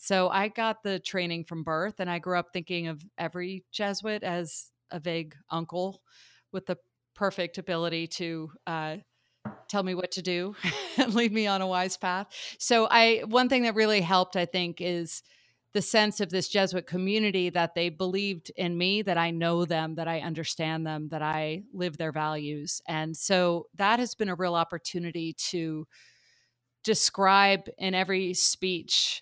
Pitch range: 165-190 Hz